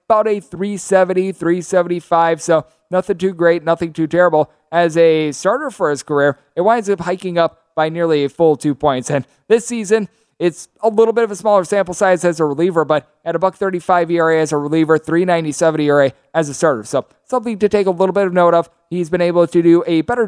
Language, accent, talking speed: English, American, 220 wpm